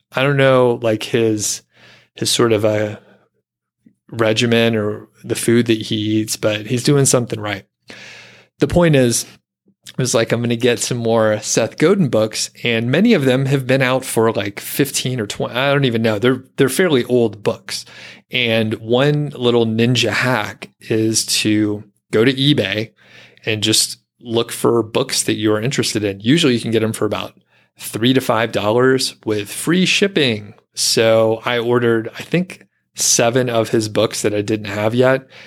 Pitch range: 110-125 Hz